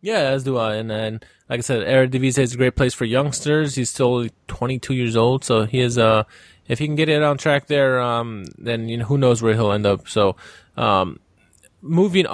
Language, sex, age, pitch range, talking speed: English, male, 20-39, 120-145 Hz, 230 wpm